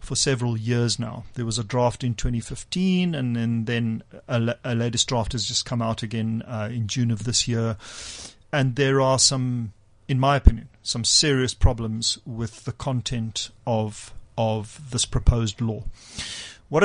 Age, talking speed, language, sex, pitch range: 40-59, 165 wpm, English, male, 115-130 Hz